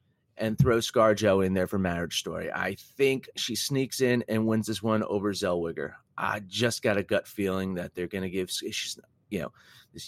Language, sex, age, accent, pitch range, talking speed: English, male, 30-49, American, 95-125 Hz, 200 wpm